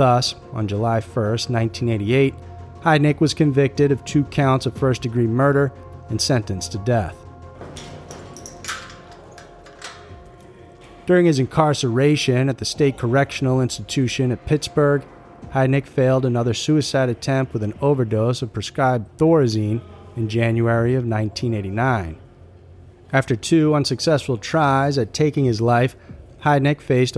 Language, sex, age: English, male, 30-49